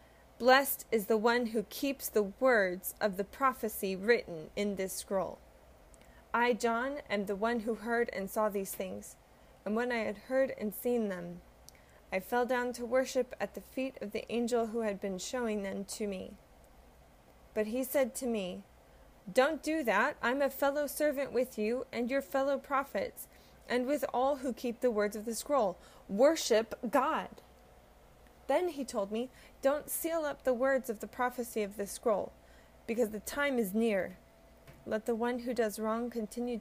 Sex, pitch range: female, 200-255 Hz